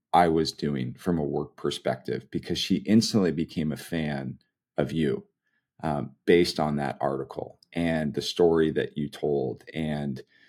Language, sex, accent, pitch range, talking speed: English, male, American, 75-100 Hz, 155 wpm